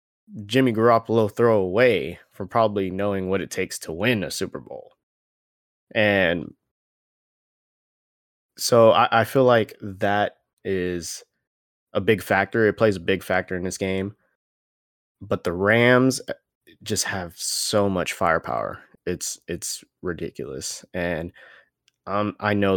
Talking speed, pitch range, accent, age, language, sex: 130 wpm, 85-105 Hz, American, 20-39, English, male